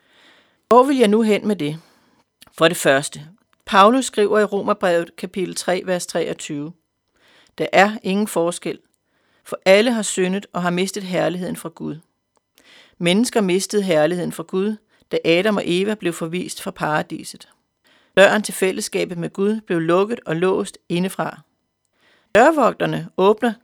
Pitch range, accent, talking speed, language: 175-215 Hz, native, 145 wpm, Danish